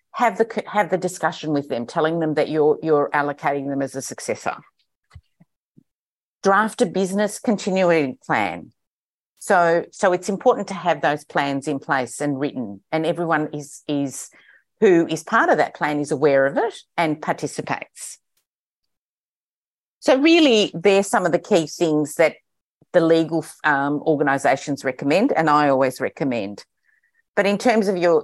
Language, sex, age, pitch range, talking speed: English, female, 50-69, 145-195 Hz, 155 wpm